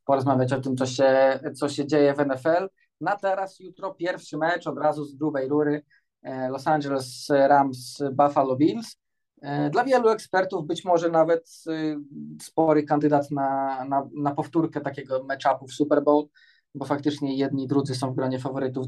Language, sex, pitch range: Polish, male, 135-160 Hz